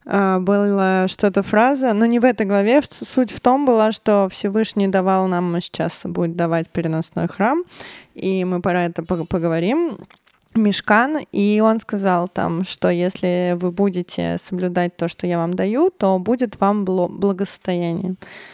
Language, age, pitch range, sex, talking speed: Russian, 20-39, 180-220 Hz, female, 150 wpm